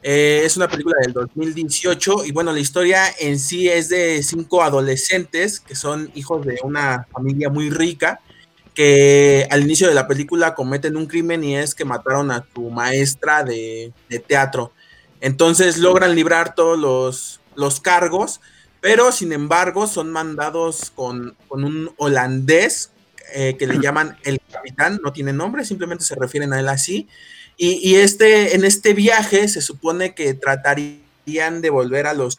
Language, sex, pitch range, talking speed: Spanish, male, 135-175 Hz, 165 wpm